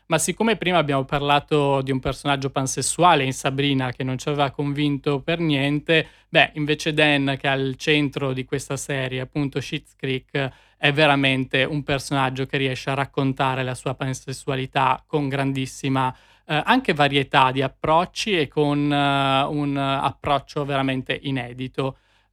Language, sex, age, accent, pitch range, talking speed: Italian, male, 20-39, native, 135-160 Hz, 150 wpm